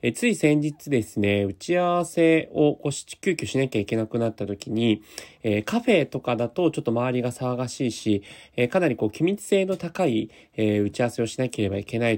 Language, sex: Japanese, male